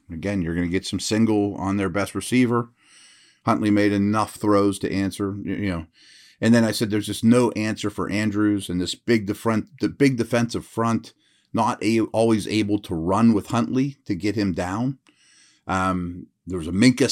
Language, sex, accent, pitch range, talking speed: English, male, American, 95-115 Hz, 190 wpm